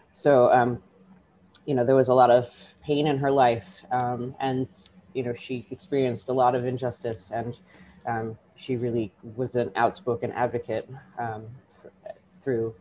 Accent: American